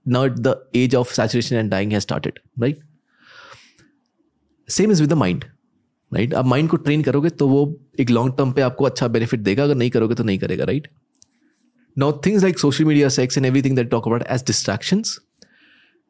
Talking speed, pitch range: 190 wpm, 120-175 Hz